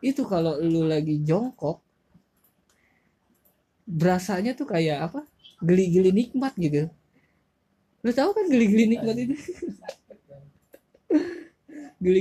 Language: Indonesian